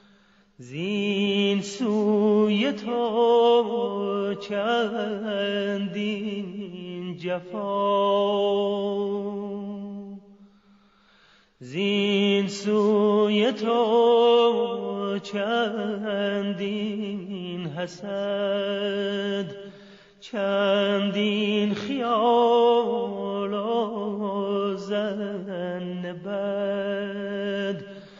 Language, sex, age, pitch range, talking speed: Persian, male, 30-49, 200-215 Hz, 30 wpm